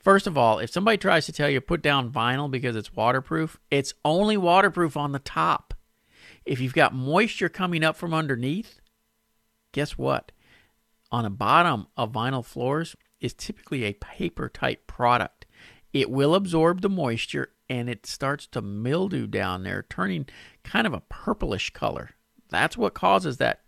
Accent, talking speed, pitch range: American, 160 wpm, 110-145 Hz